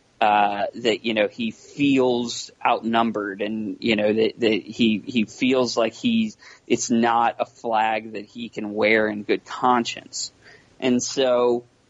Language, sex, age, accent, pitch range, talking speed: English, male, 20-39, American, 115-140 Hz, 150 wpm